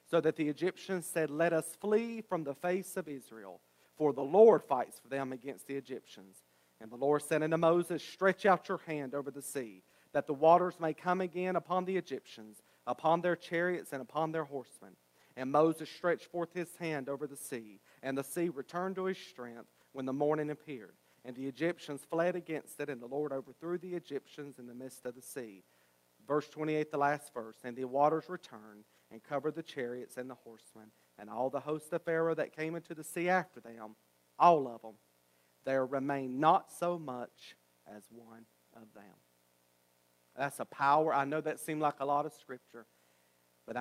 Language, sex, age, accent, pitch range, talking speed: English, male, 40-59, American, 125-155 Hz, 195 wpm